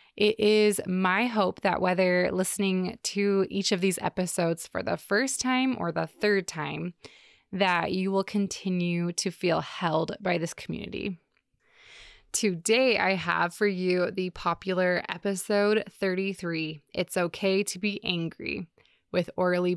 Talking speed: 140 wpm